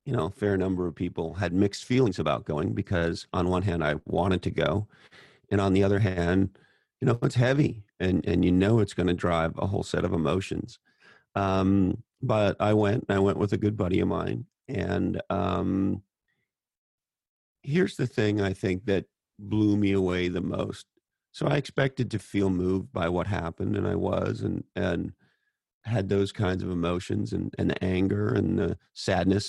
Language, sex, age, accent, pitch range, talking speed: English, male, 40-59, American, 90-105 Hz, 190 wpm